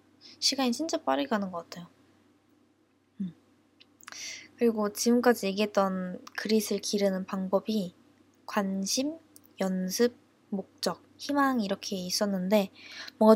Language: Korean